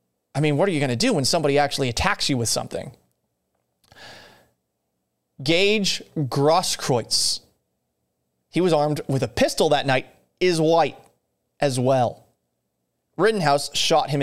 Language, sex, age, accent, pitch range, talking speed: English, male, 30-49, American, 120-150 Hz, 135 wpm